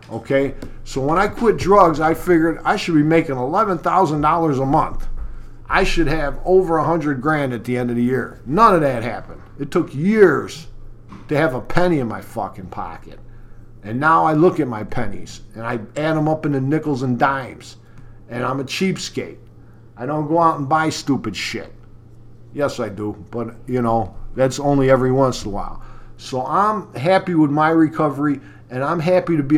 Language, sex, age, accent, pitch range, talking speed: English, male, 50-69, American, 115-160 Hz, 195 wpm